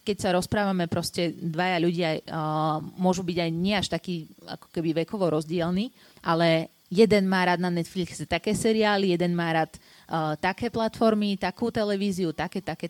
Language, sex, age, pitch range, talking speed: Slovak, female, 30-49, 165-195 Hz, 165 wpm